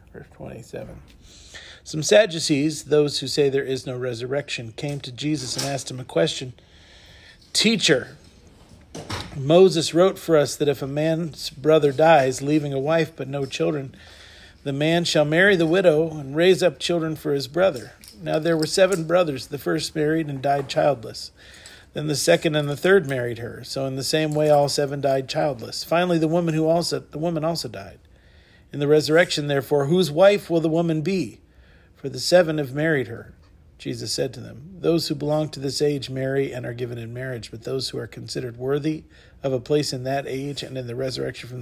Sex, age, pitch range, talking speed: male, 50-69, 130-160 Hz, 195 wpm